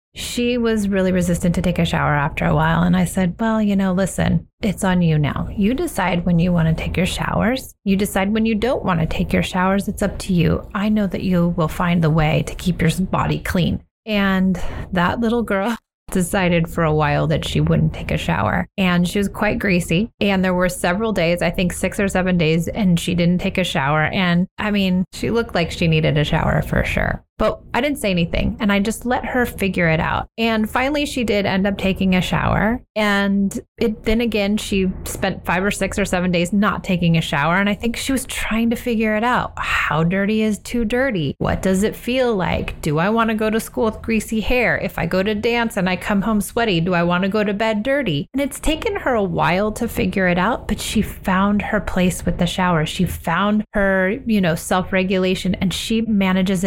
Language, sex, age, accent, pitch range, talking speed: English, female, 30-49, American, 175-220 Hz, 230 wpm